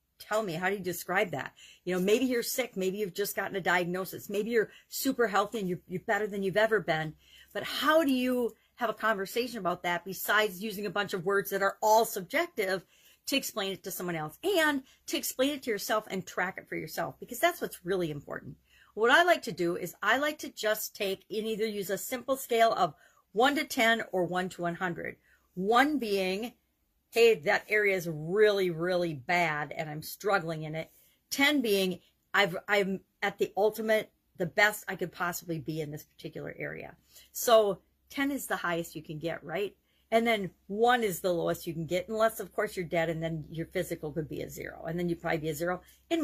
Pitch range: 175-225 Hz